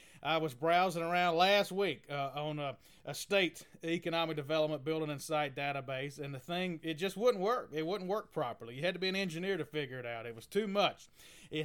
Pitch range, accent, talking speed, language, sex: 145-175 Hz, American, 220 wpm, English, male